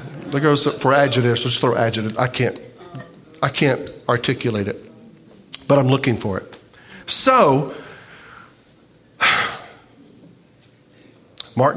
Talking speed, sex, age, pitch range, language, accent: 100 wpm, male, 50-69, 135-185 Hz, English, American